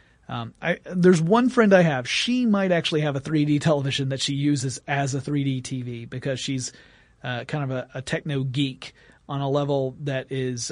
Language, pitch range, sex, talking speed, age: English, 135-165 Hz, male, 195 wpm, 30-49